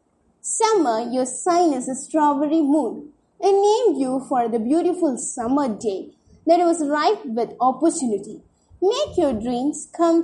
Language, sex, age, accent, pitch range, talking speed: English, female, 20-39, Indian, 255-345 Hz, 140 wpm